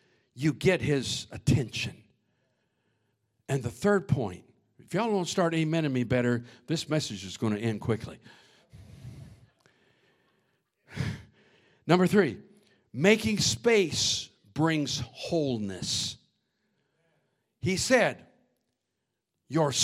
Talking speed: 95 wpm